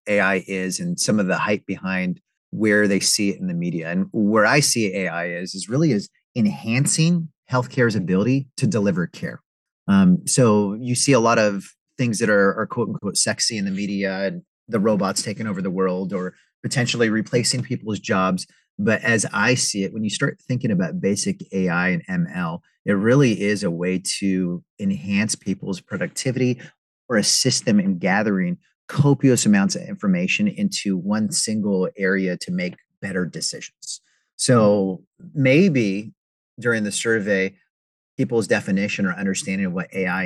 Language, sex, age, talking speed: English, male, 30-49, 165 wpm